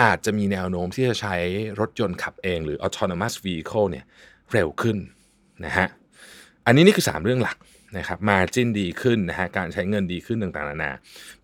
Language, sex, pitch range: Thai, male, 90-125 Hz